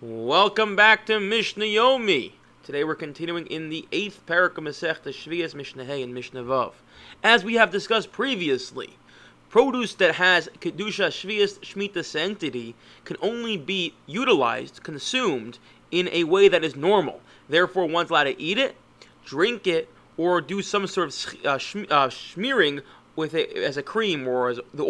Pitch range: 160-205 Hz